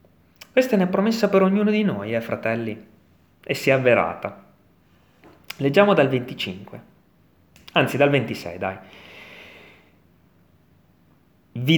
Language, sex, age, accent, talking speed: Italian, male, 30-49, native, 115 wpm